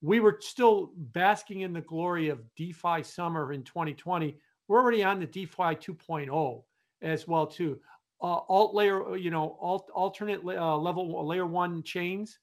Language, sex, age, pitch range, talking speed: English, male, 50-69, 160-200 Hz, 155 wpm